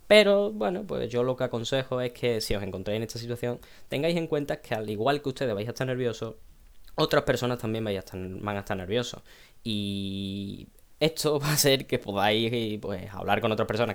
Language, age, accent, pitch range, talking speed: Spanish, 10-29, Spanish, 100-130 Hz, 210 wpm